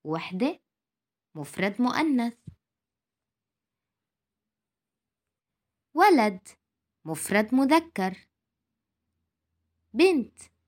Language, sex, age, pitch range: Arabic, female, 20-39, 170-280 Hz